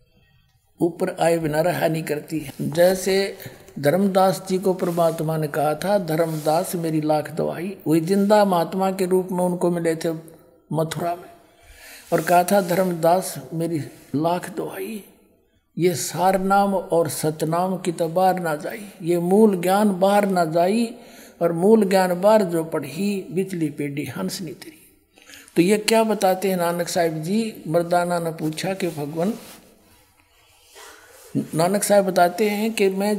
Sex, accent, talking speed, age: male, native, 145 wpm, 60-79